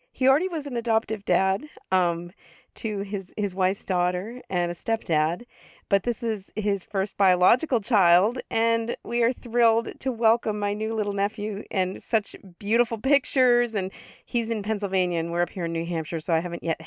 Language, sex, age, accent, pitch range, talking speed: English, female, 40-59, American, 175-225 Hz, 180 wpm